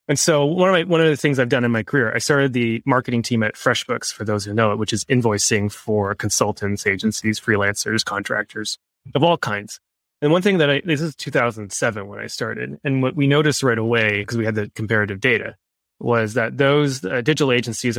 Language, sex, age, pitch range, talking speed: English, male, 20-39, 110-140 Hz, 220 wpm